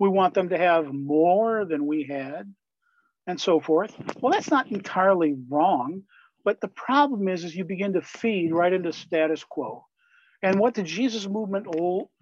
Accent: American